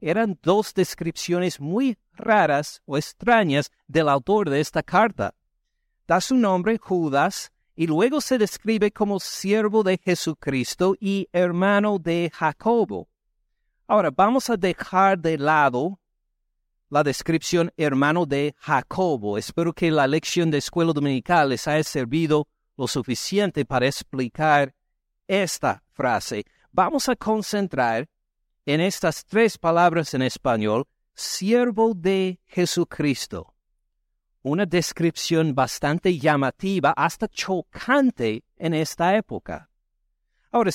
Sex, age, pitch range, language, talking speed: male, 60-79, 150-205 Hz, Spanish, 115 wpm